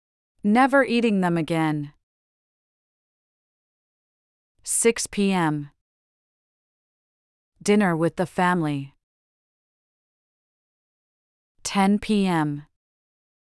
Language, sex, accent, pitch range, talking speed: English, female, American, 155-205 Hz, 55 wpm